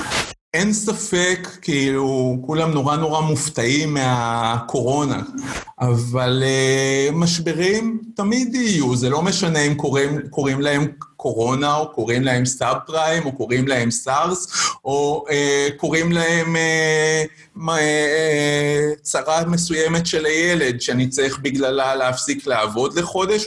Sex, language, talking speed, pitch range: male, Hebrew, 120 wpm, 135-170 Hz